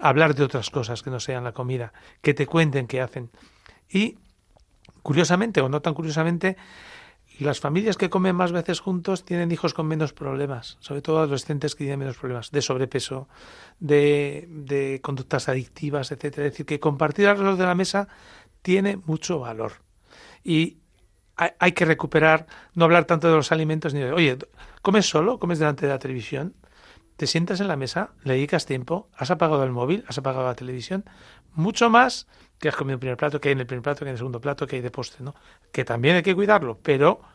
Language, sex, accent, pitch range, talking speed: Spanish, male, Spanish, 135-170 Hz, 200 wpm